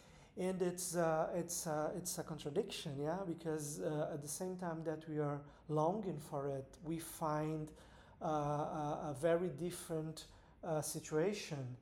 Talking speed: 145 wpm